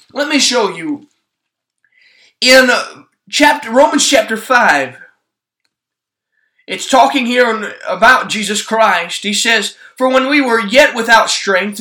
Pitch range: 205-275 Hz